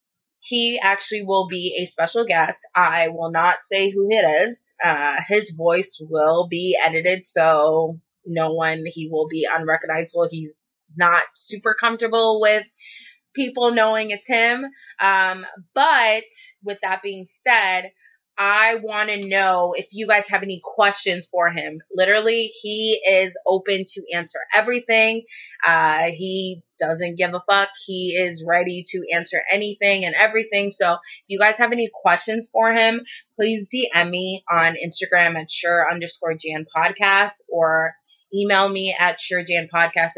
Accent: American